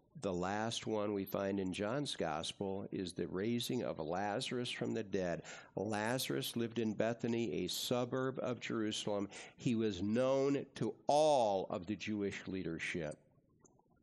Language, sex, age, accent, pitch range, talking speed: English, male, 60-79, American, 90-125 Hz, 140 wpm